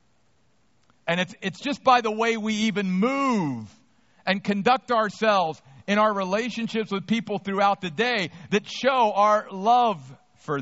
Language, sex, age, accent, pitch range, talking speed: English, male, 50-69, American, 160-220 Hz, 145 wpm